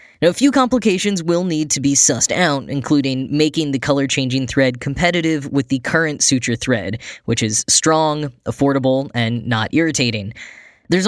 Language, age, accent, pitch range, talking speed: English, 10-29, American, 130-165 Hz, 155 wpm